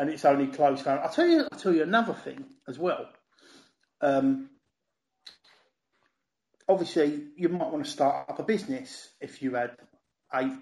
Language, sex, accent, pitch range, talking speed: English, male, British, 135-215 Hz, 155 wpm